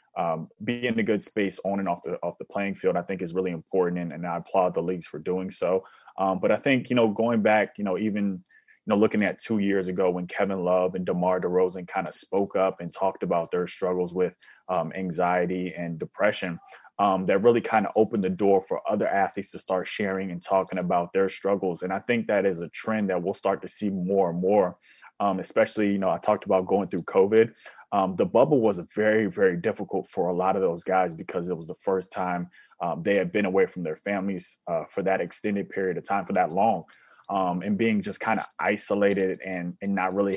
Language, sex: English, male